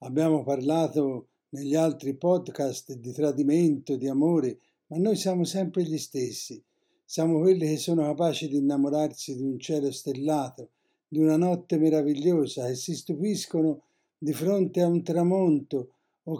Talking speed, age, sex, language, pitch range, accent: 145 wpm, 60-79, male, Italian, 145-180 Hz, native